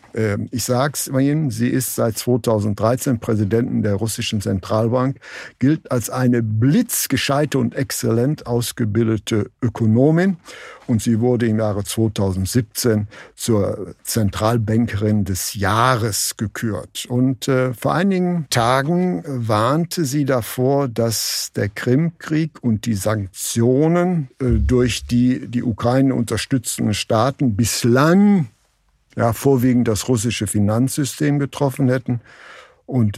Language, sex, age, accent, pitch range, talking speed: German, male, 60-79, German, 110-130 Hz, 110 wpm